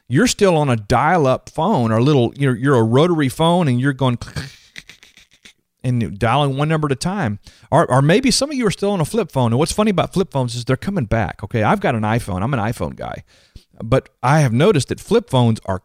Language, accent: English, American